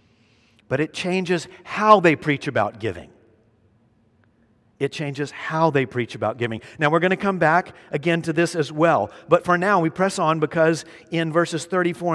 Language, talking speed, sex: English, 180 wpm, male